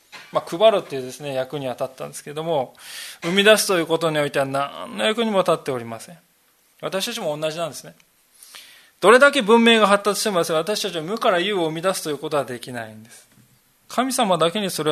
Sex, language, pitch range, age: male, Japanese, 155-220 Hz, 20-39